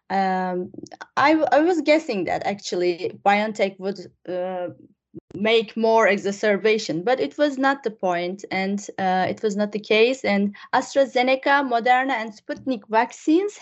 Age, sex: 20-39, female